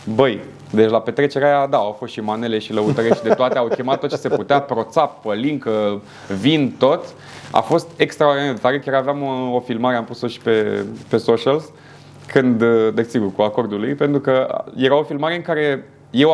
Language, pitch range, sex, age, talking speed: Romanian, 120-160 Hz, male, 20-39, 185 wpm